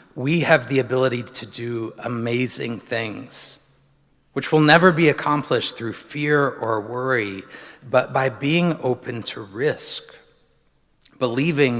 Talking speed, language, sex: 120 wpm, English, male